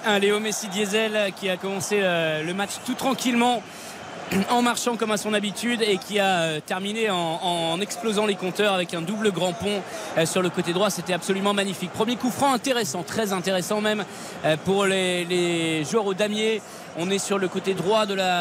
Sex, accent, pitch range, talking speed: male, French, 175-220 Hz, 190 wpm